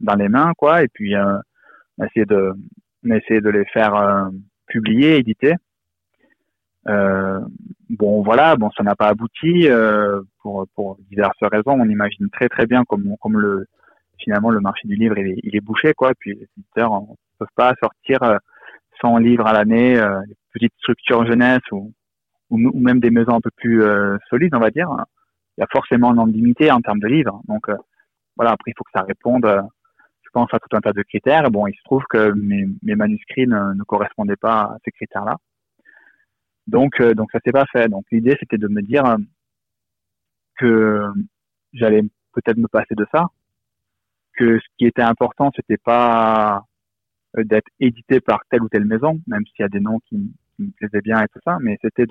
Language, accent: French, French